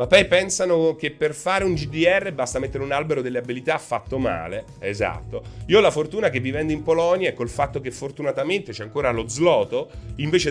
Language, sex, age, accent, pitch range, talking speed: Italian, male, 30-49, native, 100-155 Hz, 200 wpm